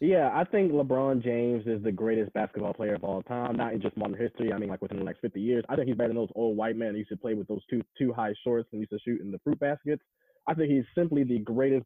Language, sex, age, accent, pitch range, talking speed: English, male, 20-39, American, 110-150 Hz, 300 wpm